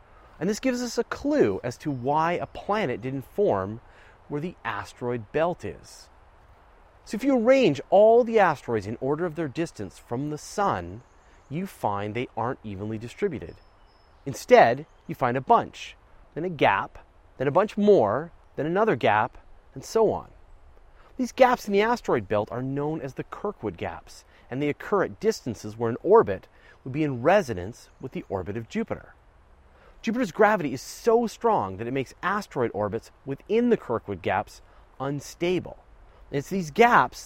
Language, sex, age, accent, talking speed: English, male, 30-49, American, 165 wpm